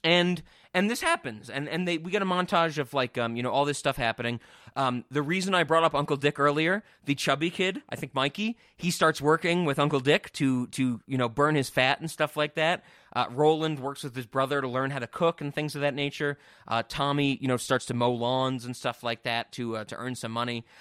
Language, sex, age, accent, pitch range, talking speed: English, male, 20-39, American, 130-185 Hz, 250 wpm